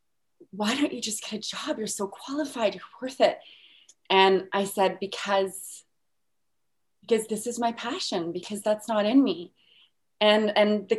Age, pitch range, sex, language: 30-49, 170-215 Hz, female, English